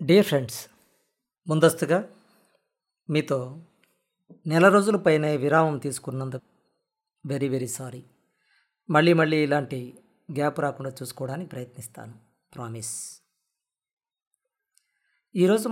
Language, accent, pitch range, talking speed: Telugu, native, 135-180 Hz, 75 wpm